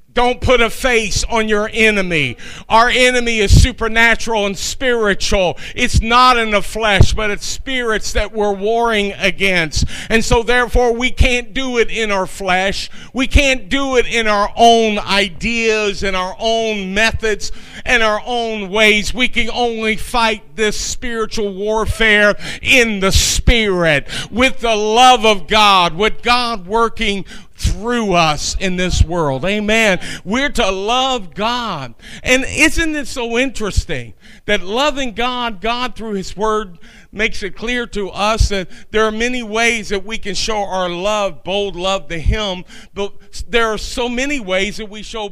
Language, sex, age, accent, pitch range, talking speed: English, male, 50-69, American, 195-235 Hz, 160 wpm